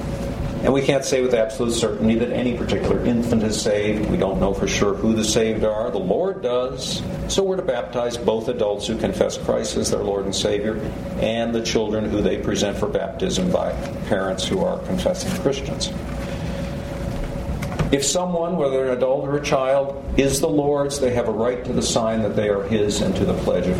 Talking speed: 200 wpm